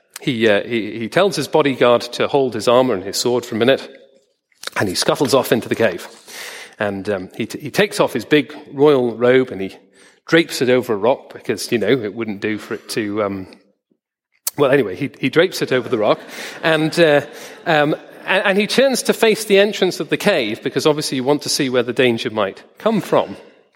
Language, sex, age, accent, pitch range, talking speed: English, male, 40-59, British, 125-205 Hz, 220 wpm